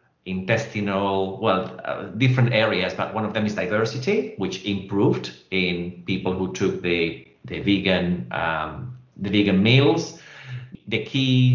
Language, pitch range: English, 90-110 Hz